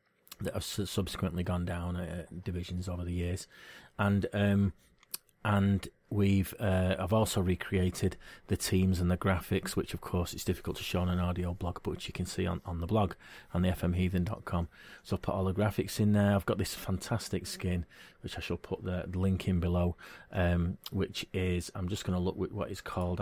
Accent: British